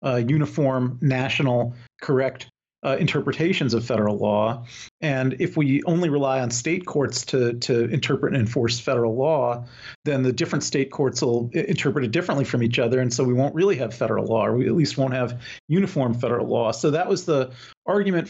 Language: English